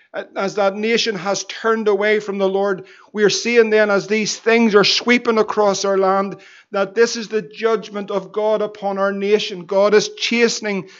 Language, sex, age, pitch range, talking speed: English, male, 50-69, 200-225 Hz, 185 wpm